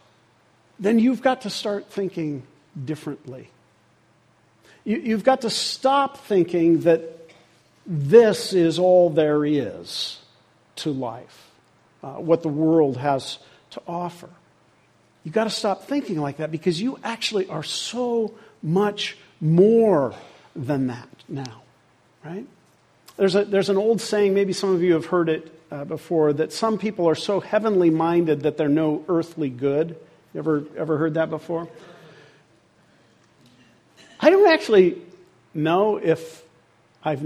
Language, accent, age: English, American, 50-69